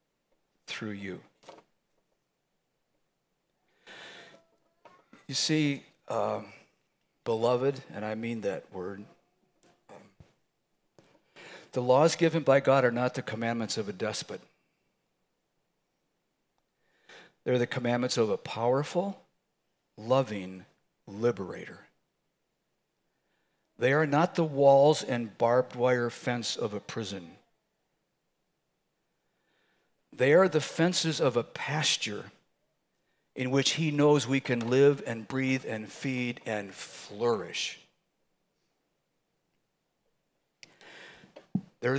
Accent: American